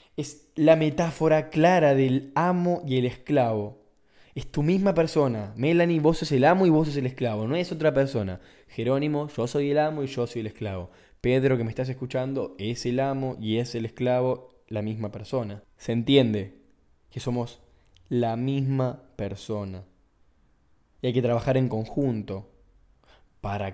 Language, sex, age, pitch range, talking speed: Spanish, male, 10-29, 100-135 Hz, 165 wpm